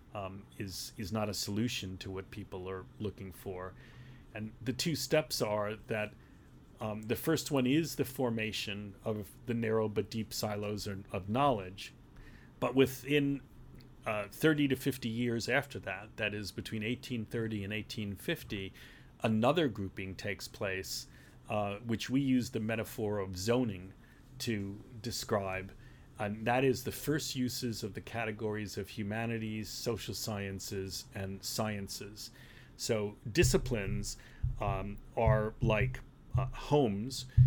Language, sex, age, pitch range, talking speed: English, male, 40-59, 105-125 Hz, 135 wpm